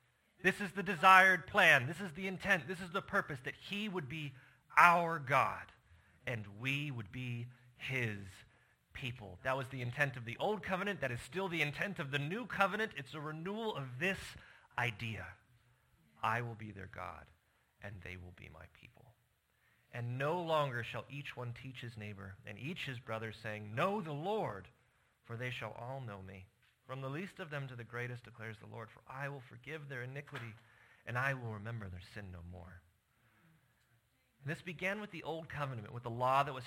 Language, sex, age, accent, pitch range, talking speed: English, male, 30-49, American, 120-160 Hz, 195 wpm